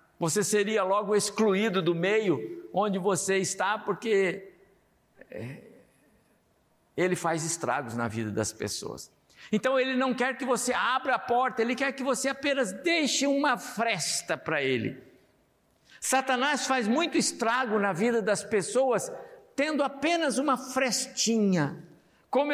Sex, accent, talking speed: male, Brazilian, 130 wpm